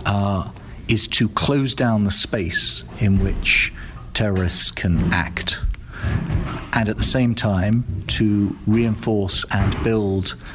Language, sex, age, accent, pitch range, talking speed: English, male, 40-59, British, 95-115 Hz, 120 wpm